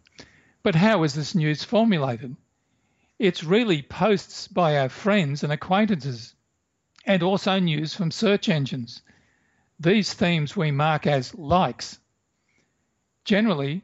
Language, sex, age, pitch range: English, male, 50-69, 145-190 Hz